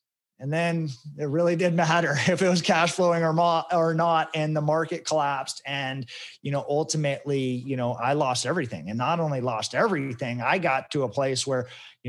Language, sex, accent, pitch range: English, male, American, 125-155 Hz